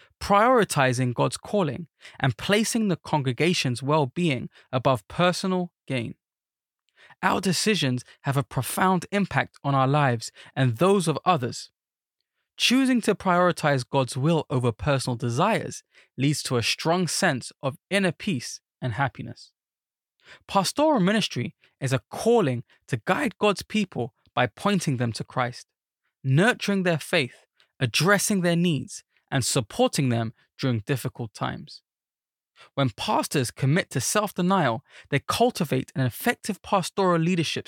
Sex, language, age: male, English, 20-39